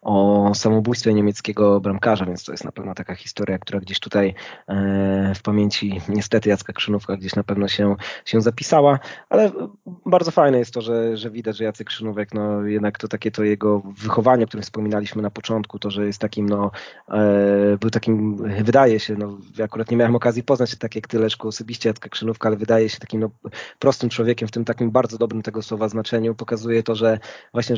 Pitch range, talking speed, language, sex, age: 105-120 Hz, 190 wpm, Polish, male, 20-39